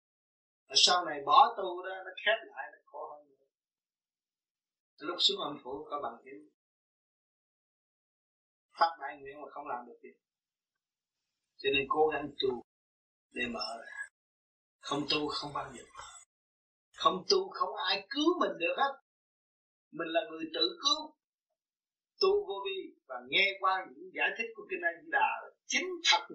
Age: 30-49